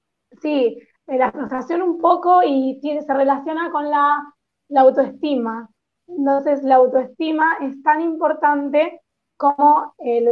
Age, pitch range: 20-39, 250-300 Hz